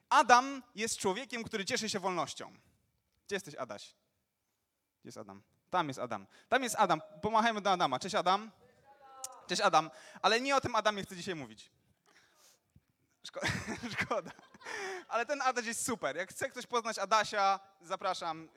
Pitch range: 165-245 Hz